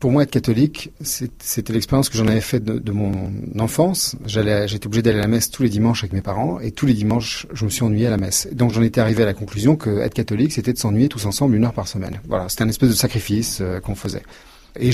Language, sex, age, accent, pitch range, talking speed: French, male, 40-59, French, 105-130 Hz, 270 wpm